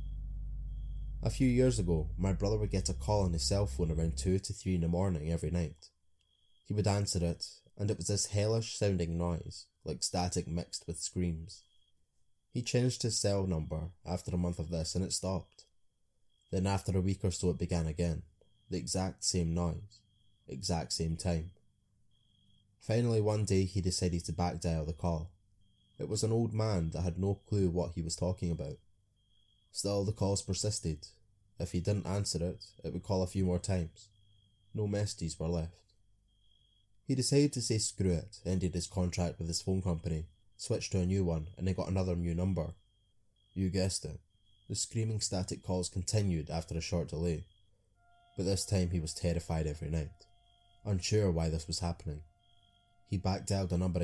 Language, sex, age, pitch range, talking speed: English, male, 20-39, 85-100 Hz, 185 wpm